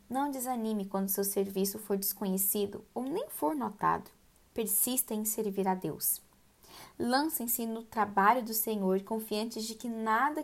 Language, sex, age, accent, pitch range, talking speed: Portuguese, female, 10-29, Brazilian, 200-235 Hz, 145 wpm